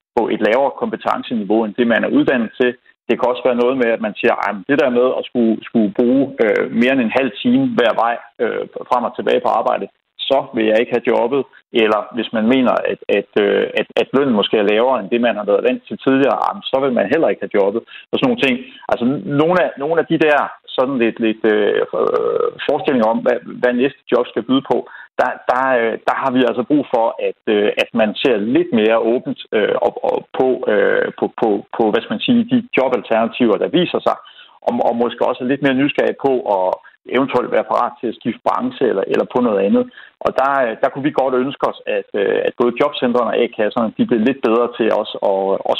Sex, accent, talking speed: male, native, 225 wpm